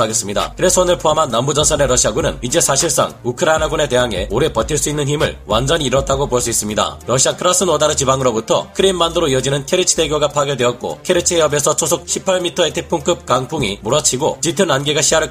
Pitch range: 135-170 Hz